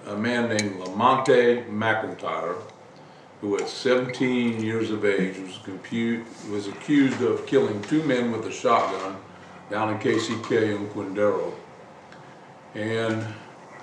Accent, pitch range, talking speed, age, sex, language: American, 100-120 Hz, 115 wpm, 50-69, male, English